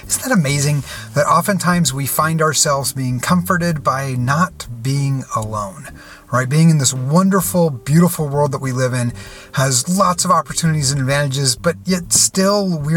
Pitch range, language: 135-185 Hz, English